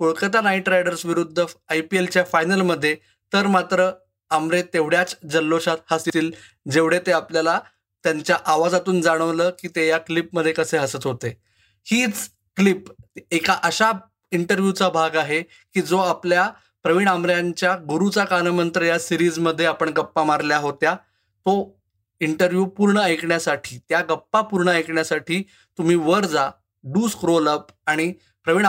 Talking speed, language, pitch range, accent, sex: 130 wpm, Marathi, 155-180 Hz, native, male